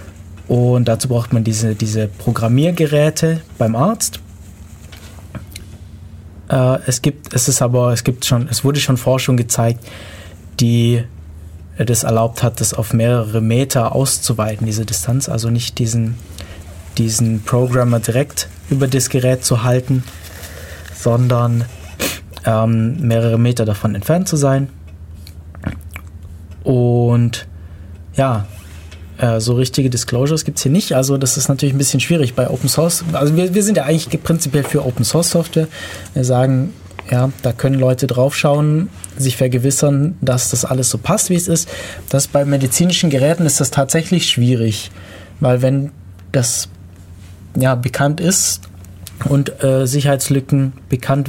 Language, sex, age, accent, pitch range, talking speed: German, male, 20-39, German, 95-135 Hz, 140 wpm